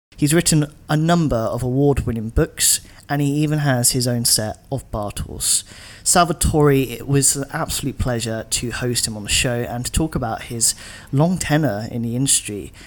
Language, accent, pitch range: English, British, 110-145 Hz